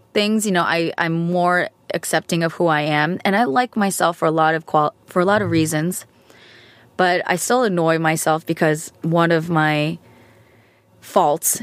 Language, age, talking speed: English, 20-39, 180 wpm